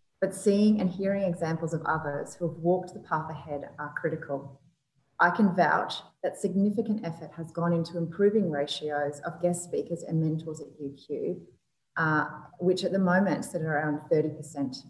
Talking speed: 165 wpm